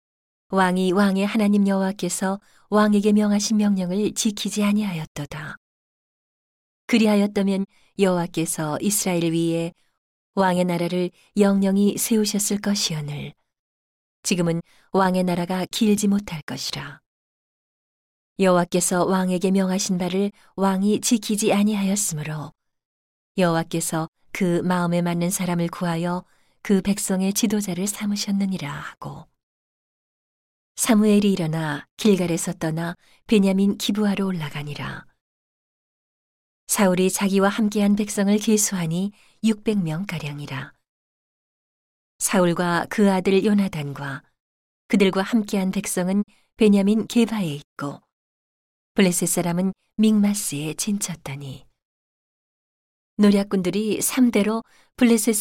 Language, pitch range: Korean, 170-205 Hz